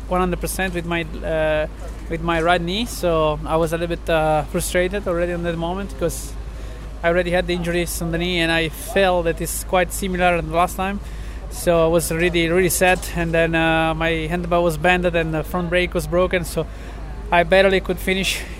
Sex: male